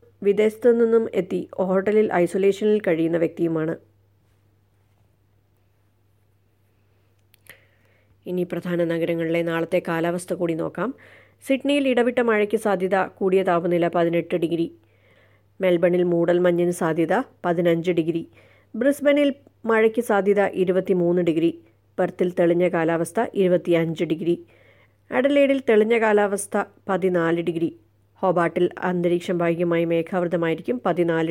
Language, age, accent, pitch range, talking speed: Malayalam, 30-49, native, 165-195 Hz, 90 wpm